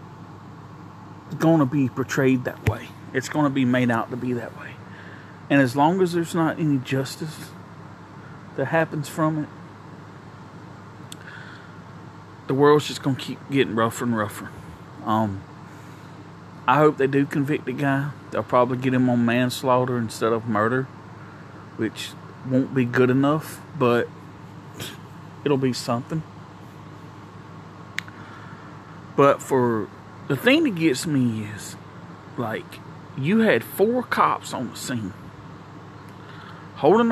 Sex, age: male, 40-59